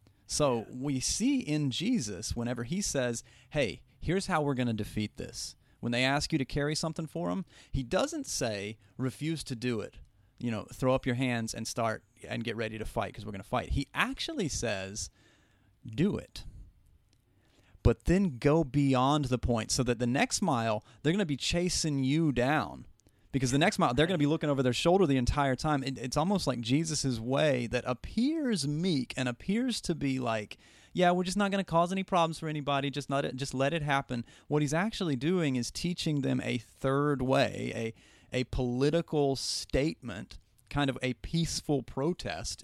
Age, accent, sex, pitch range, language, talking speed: 30-49, American, male, 120-155 Hz, English, 195 wpm